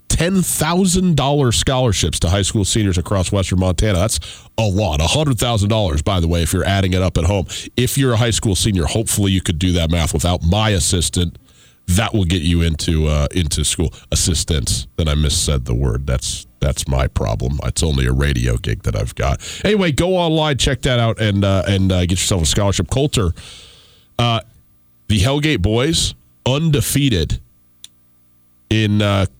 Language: English